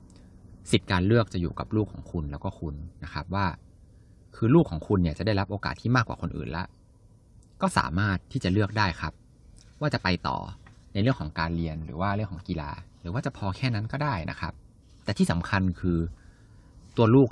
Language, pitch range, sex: Thai, 85-115 Hz, male